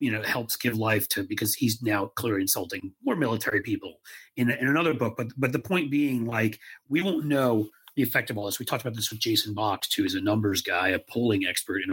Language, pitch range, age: English, 110-150 Hz, 40-59